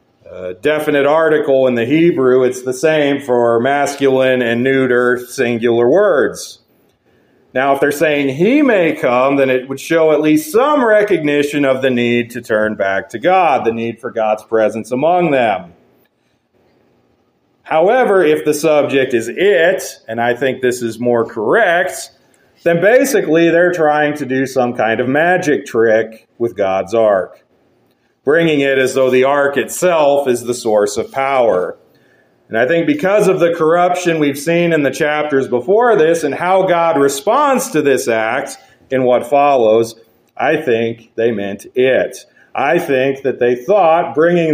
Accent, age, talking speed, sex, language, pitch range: American, 40-59, 160 wpm, male, English, 120-160 Hz